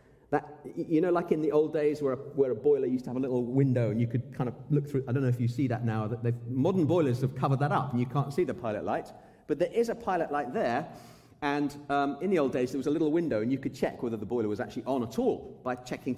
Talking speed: 285 wpm